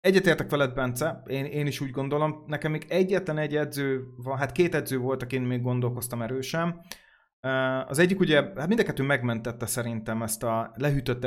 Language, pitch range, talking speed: Hungarian, 120-145 Hz, 160 wpm